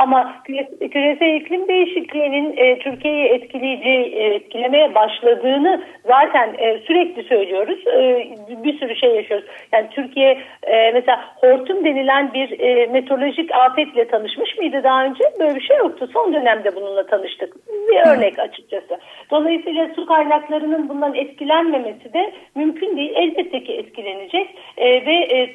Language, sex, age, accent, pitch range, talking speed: Turkish, female, 50-69, native, 235-330 Hz, 115 wpm